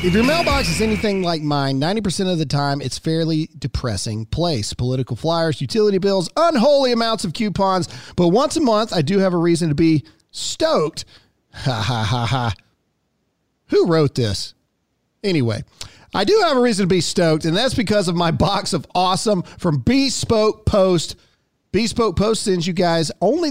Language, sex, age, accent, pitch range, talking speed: English, male, 40-59, American, 140-210 Hz, 175 wpm